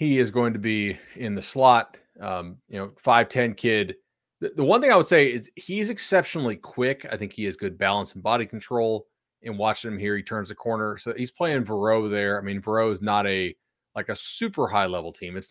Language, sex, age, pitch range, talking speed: English, male, 30-49, 100-130 Hz, 230 wpm